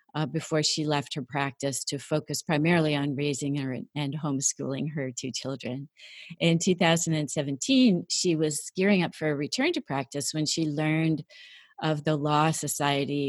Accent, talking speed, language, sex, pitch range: American, 160 wpm, English, female, 140-170 Hz